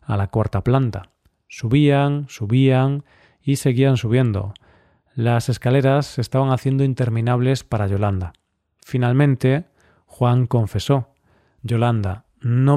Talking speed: 105 wpm